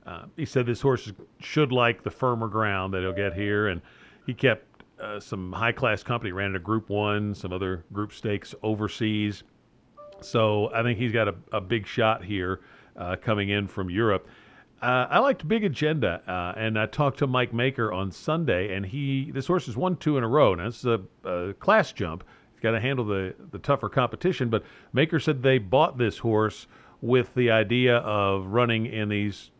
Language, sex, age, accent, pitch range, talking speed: English, male, 50-69, American, 95-125 Hz, 200 wpm